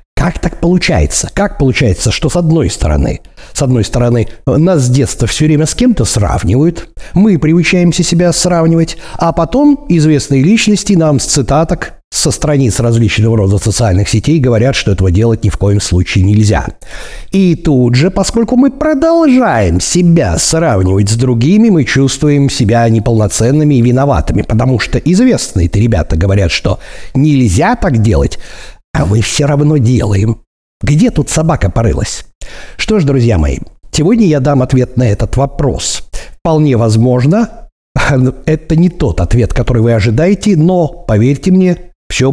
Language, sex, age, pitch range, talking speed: Russian, male, 60-79, 110-165 Hz, 145 wpm